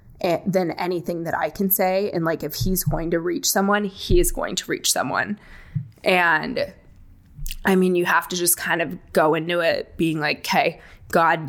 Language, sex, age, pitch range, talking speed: English, female, 20-39, 165-195 Hz, 190 wpm